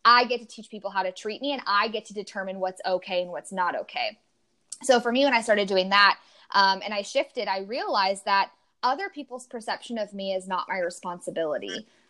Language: English